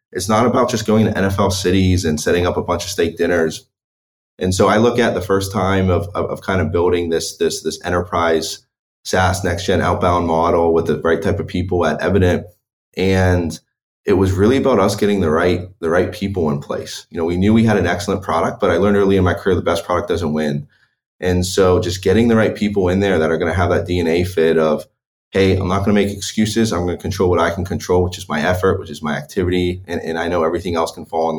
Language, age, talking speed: English, 20-39, 250 wpm